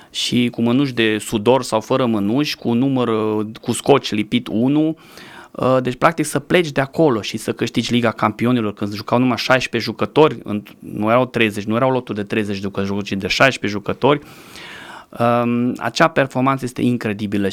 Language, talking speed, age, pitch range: Romanian, 170 wpm, 20-39, 115-150 Hz